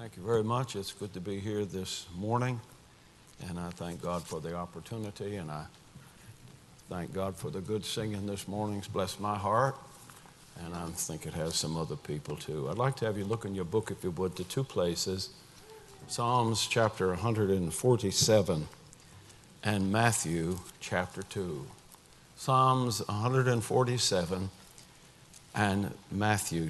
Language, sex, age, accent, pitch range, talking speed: English, male, 60-79, American, 100-130 Hz, 150 wpm